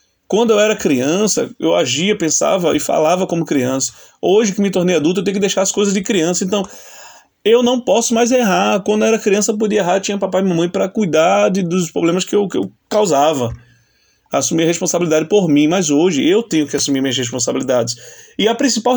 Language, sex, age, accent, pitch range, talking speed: Portuguese, male, 20-39, Brazilian, 165-225 Hz, 215 wpm